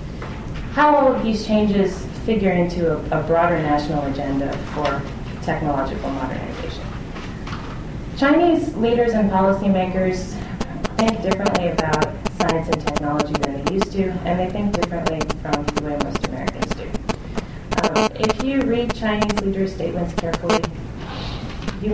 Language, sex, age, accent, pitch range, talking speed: English, female, 30-49, American, 160-200 Hz, 130 wpm